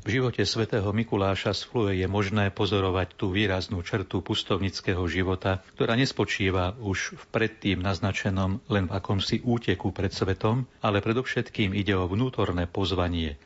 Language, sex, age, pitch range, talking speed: Slovak, male, 40-59, 95-110 Hz, 140 wpm